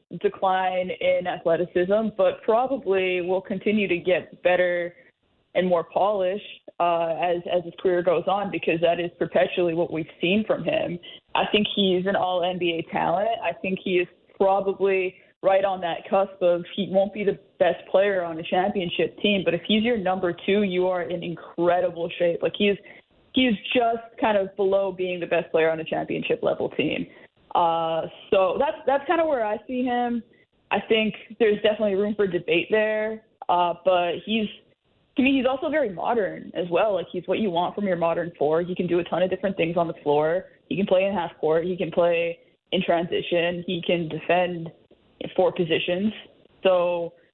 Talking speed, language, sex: 195 wpm, English, female